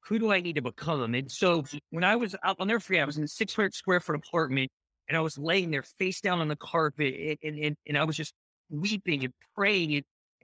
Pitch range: 175-265 Hz